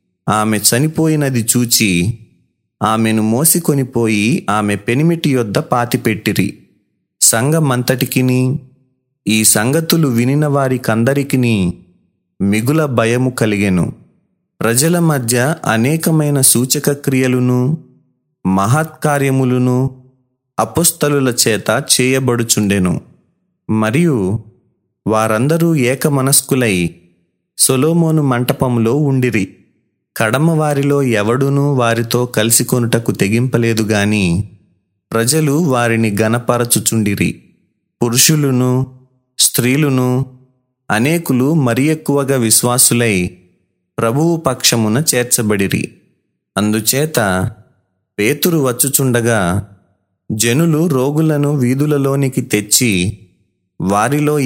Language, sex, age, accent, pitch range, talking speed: Telugu, male, 30-49, native, 110-140 Hz, 60 wpm